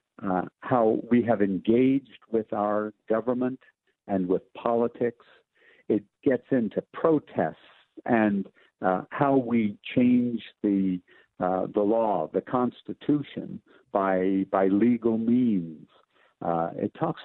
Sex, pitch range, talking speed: male, 105-125 Hz, 115 wpm